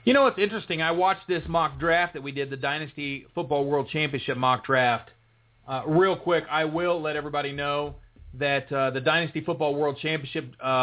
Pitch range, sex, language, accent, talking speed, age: 140-185 Hz, male, English, American, 190 wpm, 30-49